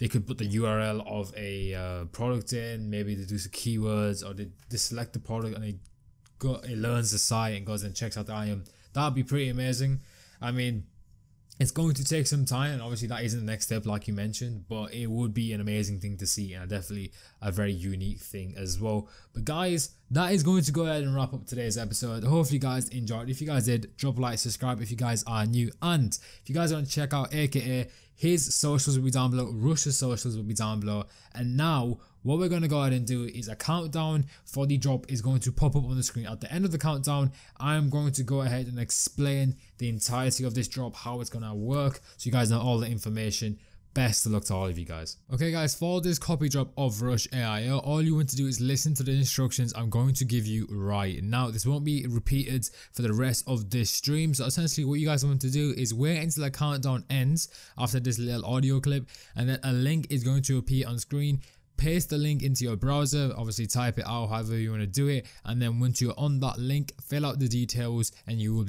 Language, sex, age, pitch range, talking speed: English, male, 20-39, 110-135 Hz, 245 wpm